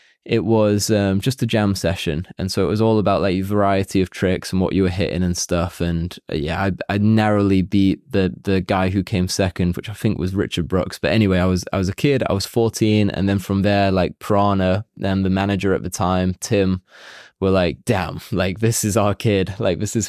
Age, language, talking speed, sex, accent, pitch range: 20-39, English, 235 wpm, male, British, 95-110 Hz